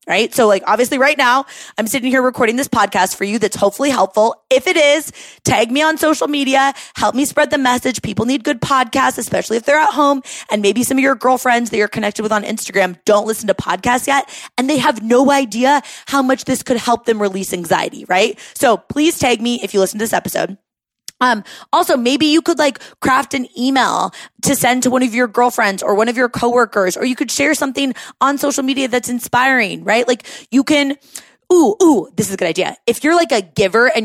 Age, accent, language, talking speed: 20-39, American, English, 225 wpm